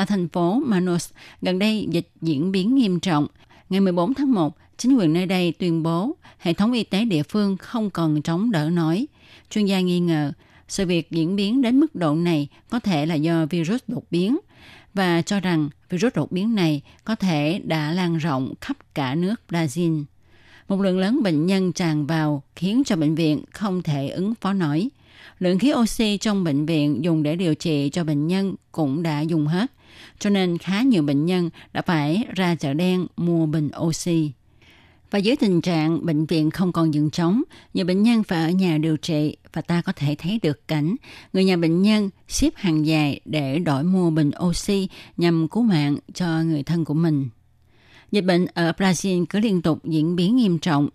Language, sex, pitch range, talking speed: Vietnamese, female, 155-195 Hz, 200 wpm